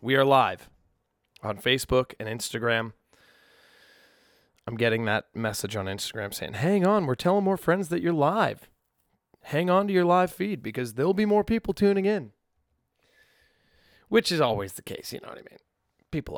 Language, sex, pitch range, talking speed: English, male, 105-155 Hz, 170 wpm